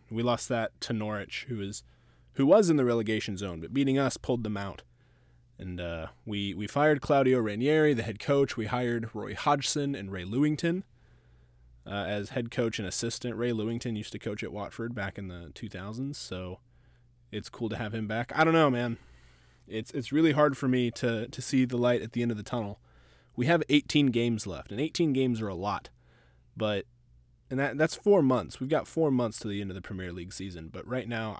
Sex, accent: male, American